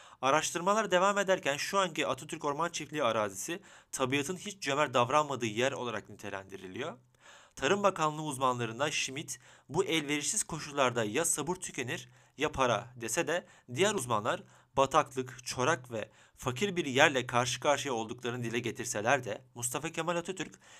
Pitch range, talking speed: 125-160 Hz, 135 wpm